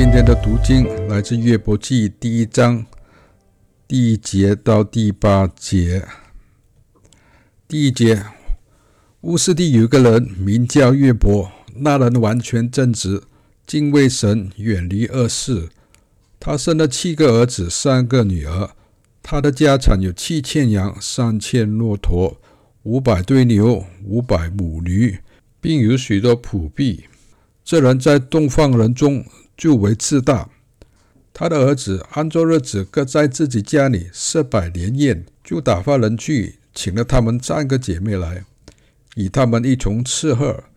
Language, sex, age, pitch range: Chinese, male, 60-79, 105-140 Hz